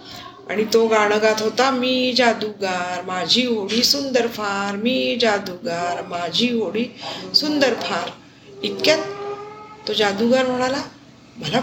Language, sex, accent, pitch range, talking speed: Marathi, female, native, 210-260 Hz, 115 wpm